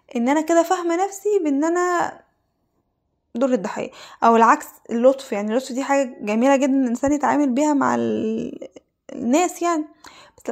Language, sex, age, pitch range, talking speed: Arabic, female, 10-29, 240-305 Hz, 150 wpm